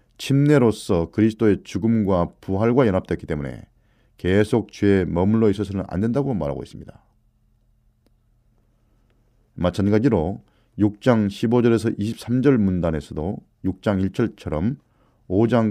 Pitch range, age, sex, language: 95-120 Hz, 40-59, male, Korean